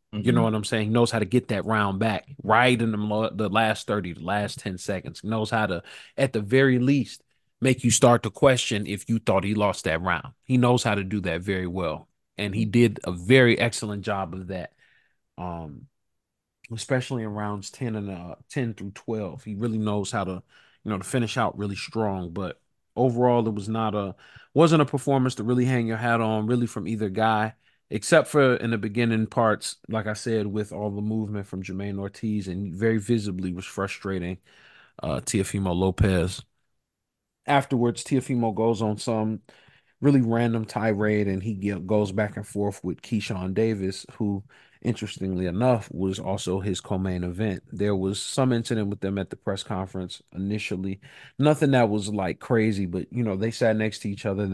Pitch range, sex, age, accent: 100-115 Hz, male, 30-49, American